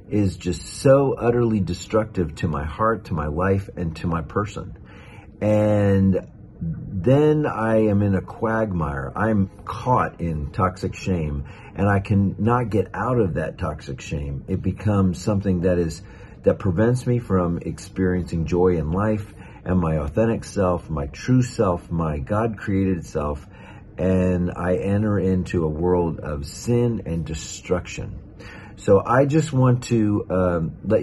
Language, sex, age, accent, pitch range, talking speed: English, male, 40-59, American, 90-115 Hz, 150 wpm